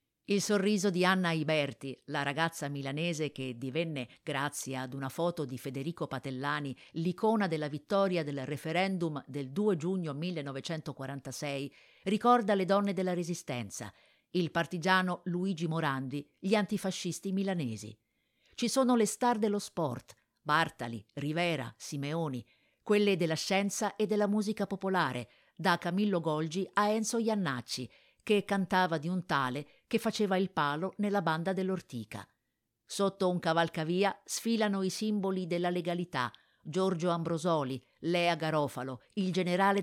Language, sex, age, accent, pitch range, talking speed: Italian, female, 50-69, native, 145-195 Hz, 130 wpm